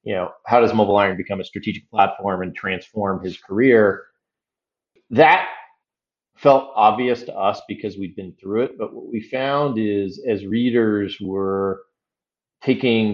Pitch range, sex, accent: 95-120 Hz, male, American